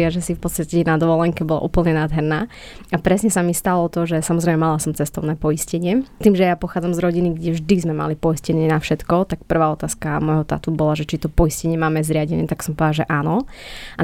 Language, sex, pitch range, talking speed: Slovak, female, 160-180 Hz, 225 wpm